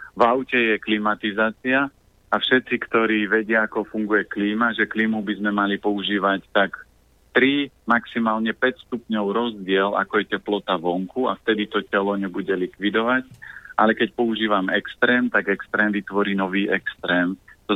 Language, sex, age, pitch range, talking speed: Slovak, male, 30-49, 100-120 Hz, 145 wpm